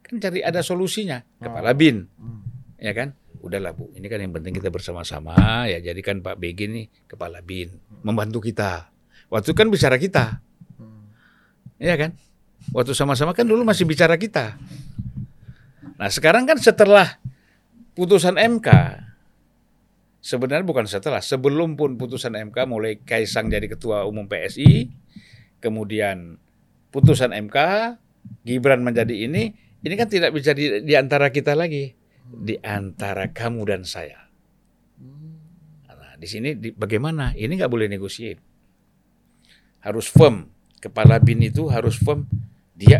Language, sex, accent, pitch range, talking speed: Indonesian, male, native, 110-180 Hz, 135 wpm